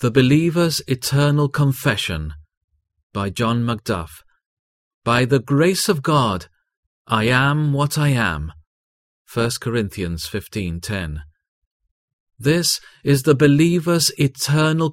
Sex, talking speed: male, 100 wpm